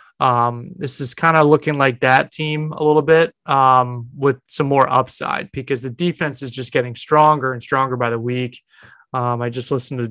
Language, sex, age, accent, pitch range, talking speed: English, male, 20-39, American, 130-160 Hz, 200 wpm